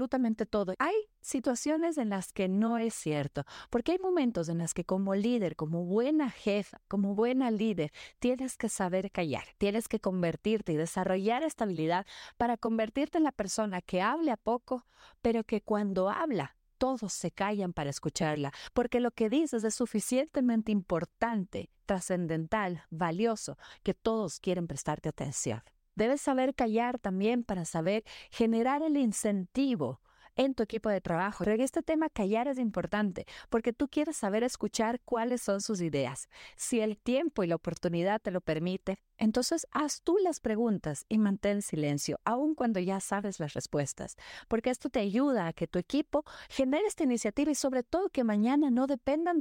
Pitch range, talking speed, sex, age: 180-255 Hz, 165 wpm, female, 40-59